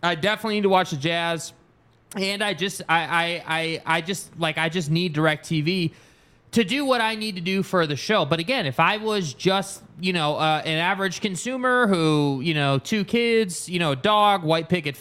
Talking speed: 210 wpm